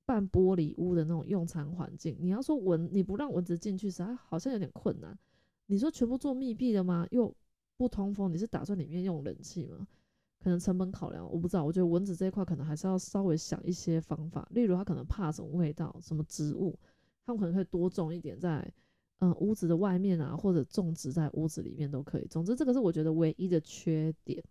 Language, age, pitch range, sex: Chinese, 20-39, 165-210 Hz, female